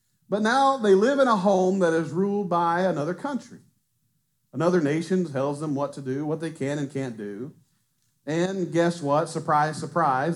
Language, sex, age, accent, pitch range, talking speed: English, male, 40-59, American, 145-195 Hz, 180 wpm